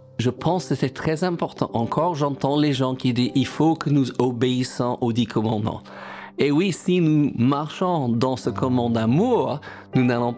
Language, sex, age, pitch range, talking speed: French, male, 50-69, 115-145 Hz, 190 wpm